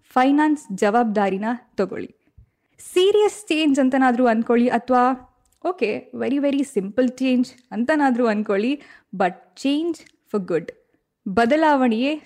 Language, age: Kannada, 10-29